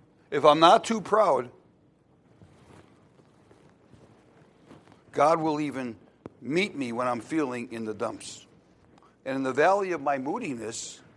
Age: 60-79